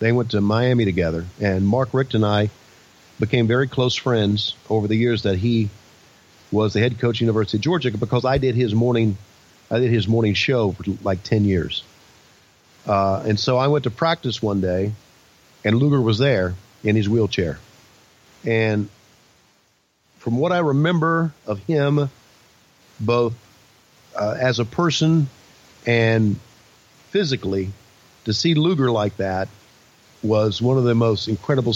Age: 40-59